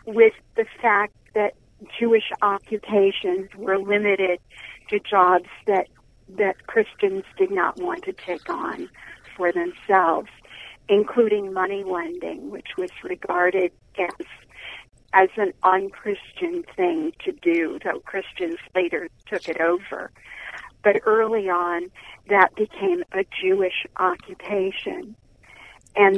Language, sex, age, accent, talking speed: English, female, 50-69, American, 115 wpm